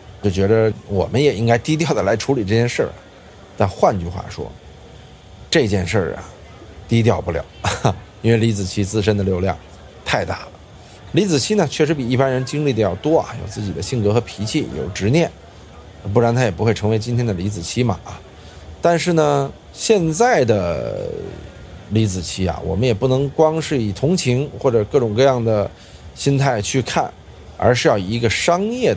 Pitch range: 95-125 Hz